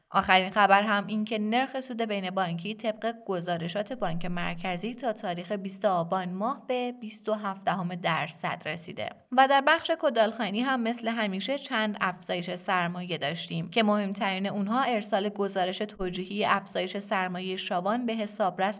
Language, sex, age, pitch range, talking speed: Persian, female, 20-39, 185-215 Hz, 140 wpm